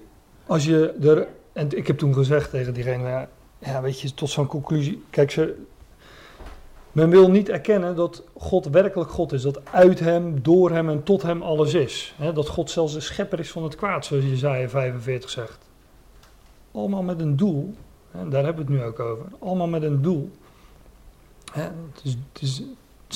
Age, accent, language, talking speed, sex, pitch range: 40-59, Dutch, Dutch, 190 wpm, male, 140-175 Hz